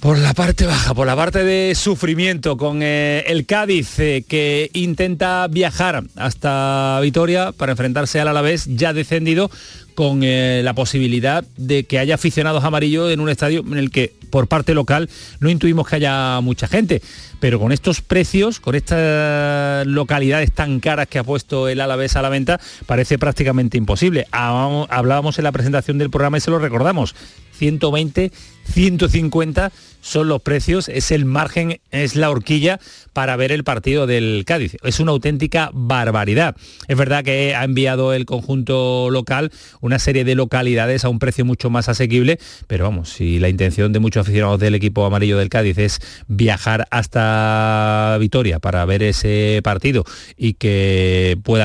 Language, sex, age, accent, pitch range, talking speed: Spanish, male, 40-59, Spanish, 120-150 Hz, 165 wpm